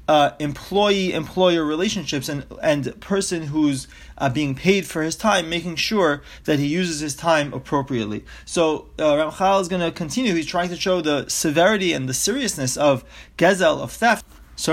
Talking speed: 170 wpm